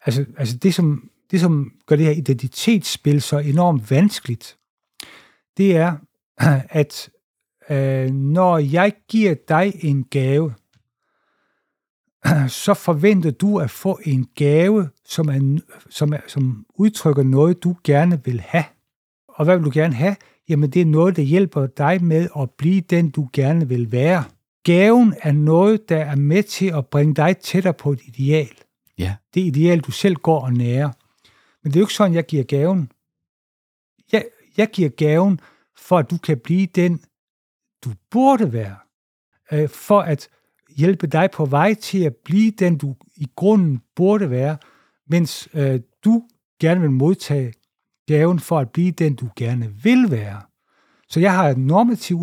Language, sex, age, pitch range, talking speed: Danish, male, 60-79, 135-185 Hz, 160 wpm